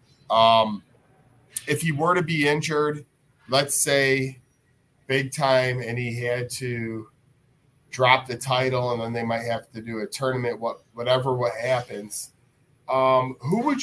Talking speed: 150 wpm